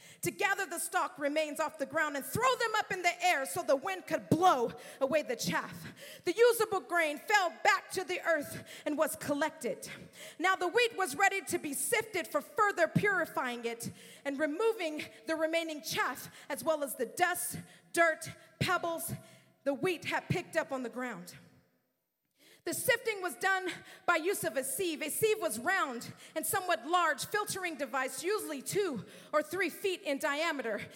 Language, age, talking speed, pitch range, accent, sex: English, 40-59, 175 wpm, 295-375 Hz, American, female